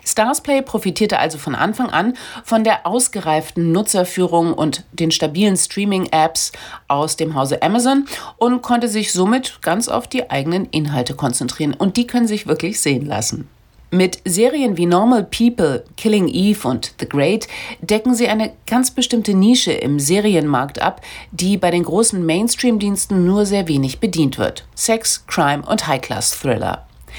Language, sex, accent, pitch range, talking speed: German, female, German, 160-225 Hz, 150 wpm